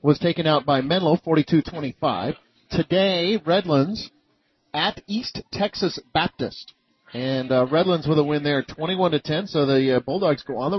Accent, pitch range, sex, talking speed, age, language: American, 140-180 Hz, male, 150 wpm, 40-59, English